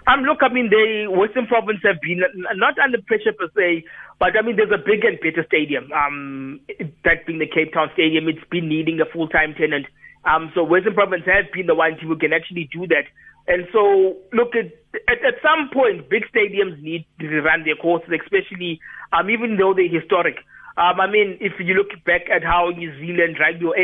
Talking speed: 210 wpm